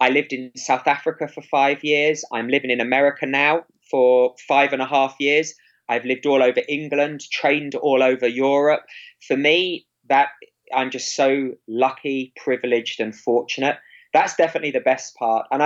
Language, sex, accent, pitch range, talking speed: Portuguese, male, British, 125-160 Hz, 170 wpm